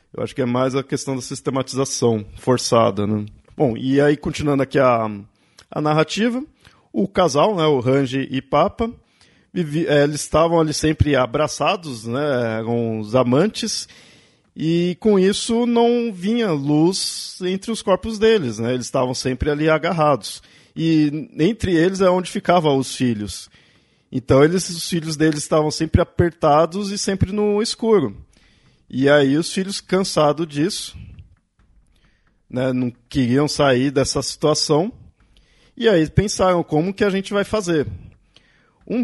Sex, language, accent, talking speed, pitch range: male, Portuguese, Brazilian, 145 wpm, 135-180 Hz